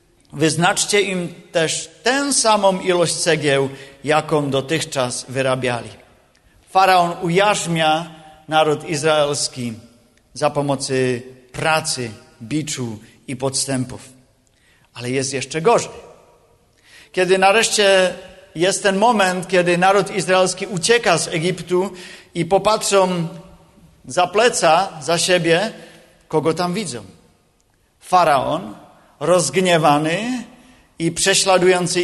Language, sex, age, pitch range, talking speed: Czech, male, 40-59, 145-185 Hz, 90 wpm